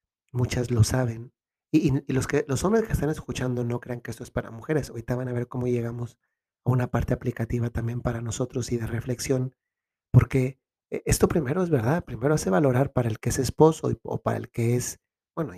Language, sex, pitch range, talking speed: Spanish, male, 120-135 Hz, 210 wpm